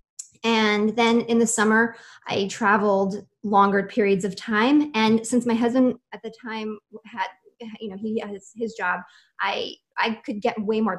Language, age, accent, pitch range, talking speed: English, 20-39, American, 195-230 Hz, 170 wpm